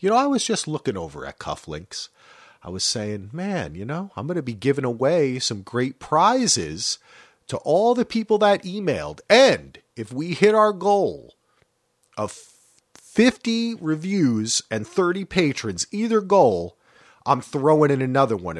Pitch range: 115-175 Hz